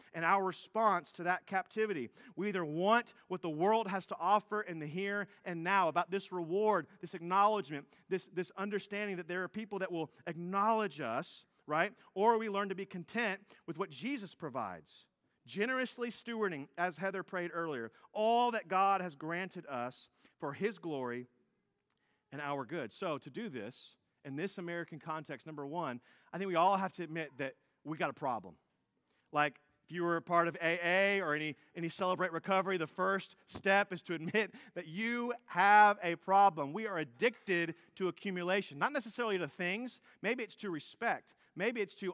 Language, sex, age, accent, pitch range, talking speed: English, male, 40-59, American, 155-200 Hz, 180 wpm